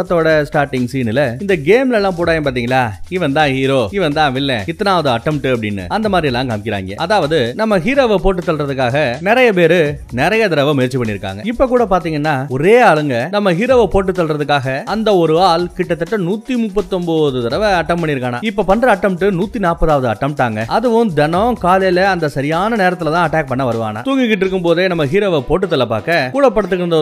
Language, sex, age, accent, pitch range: Tamil, male, 30-49, native, 145-205 Hz